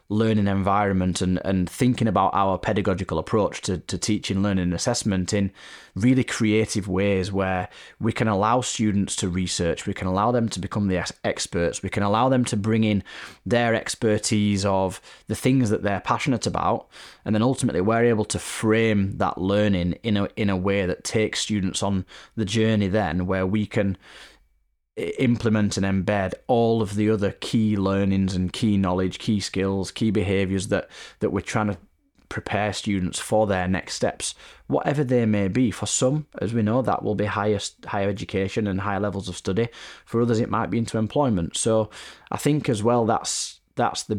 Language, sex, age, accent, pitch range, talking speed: English, male, 20-39, British, 95-110 Hz, 185 wpm